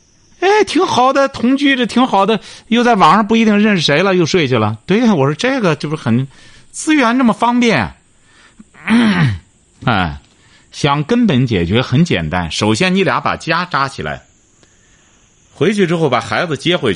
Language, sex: Chinese, male